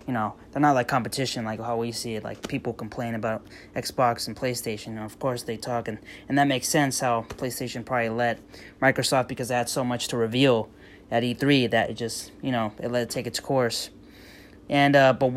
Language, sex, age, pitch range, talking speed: English, male, 20-39, 115-140 Hz, 220 wpm